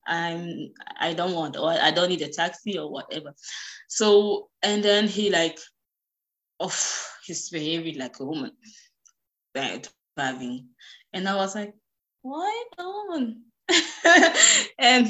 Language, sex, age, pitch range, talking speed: German, female, 20-39, 195-265 Hz, 125 wpm